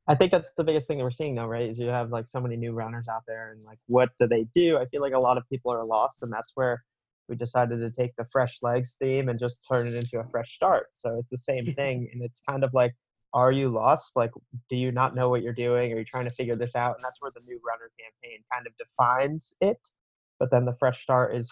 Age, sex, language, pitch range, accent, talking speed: 20-39, male, English, 120-130 Hz, American, 280 wpm